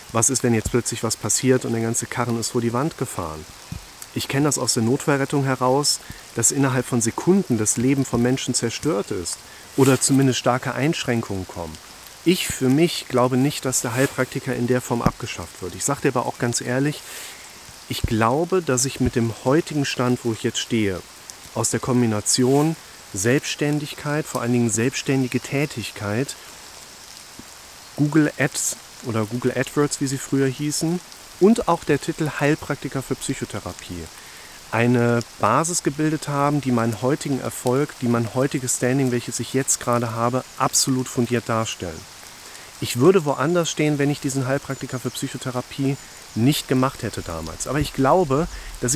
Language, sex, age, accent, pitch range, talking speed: German, male, 40-59, German, 120-145 Hz, 165 wpm